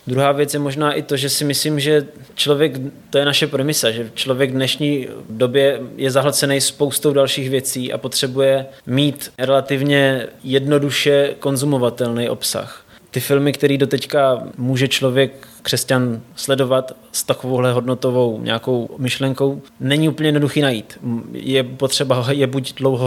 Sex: male